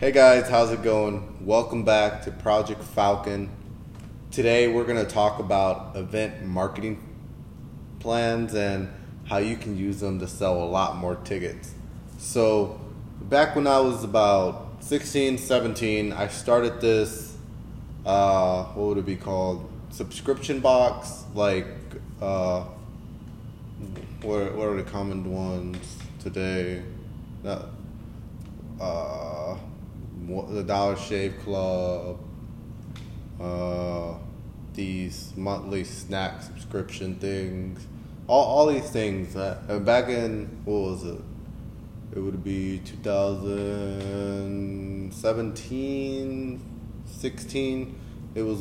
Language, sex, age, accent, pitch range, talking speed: English, male, 20-39, American, 95-115 Hz, 110 wpm